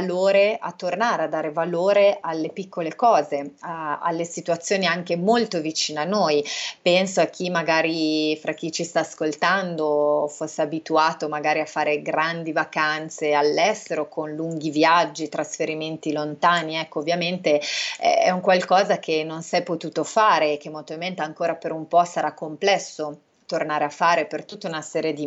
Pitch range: 155-185 Hz